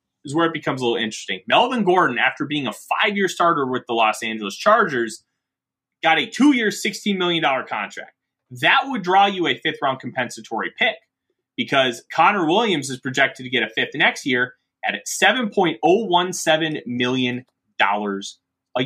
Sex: male